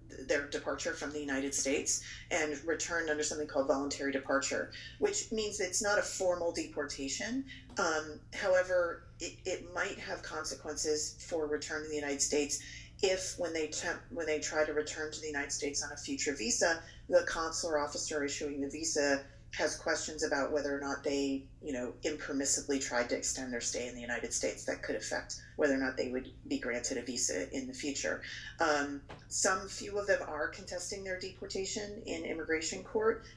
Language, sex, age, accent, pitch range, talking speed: English, female, 40-59, American, 140-160 Hz, 185 wpm